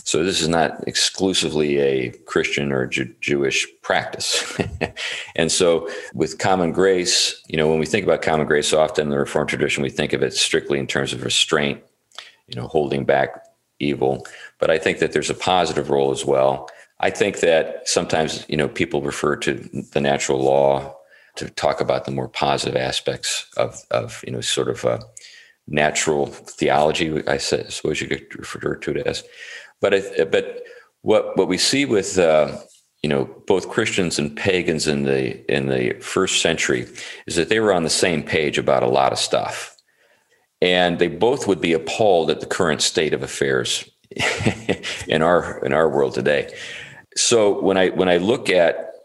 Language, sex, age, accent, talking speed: English, male, 40-59, American, 180 wpm